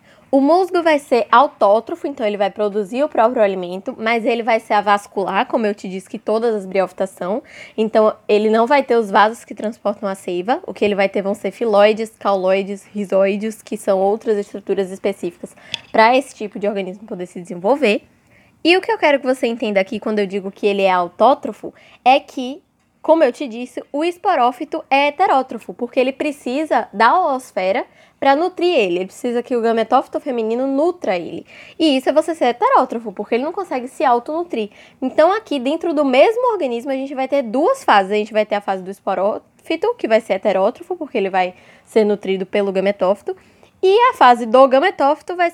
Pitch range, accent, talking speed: 205-285 Hz, Brazilian, 200 wpm